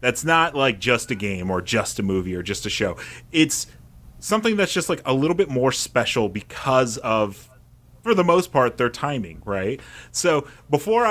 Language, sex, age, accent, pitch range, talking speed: English, male, 30-49, American, 105-145 Hz, 190 wpm